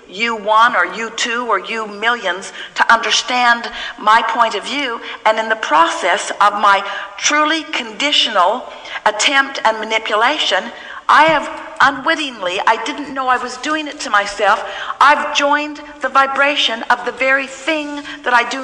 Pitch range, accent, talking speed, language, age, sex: 220-300 Hz, American, 155 wpm, English, 50-69, female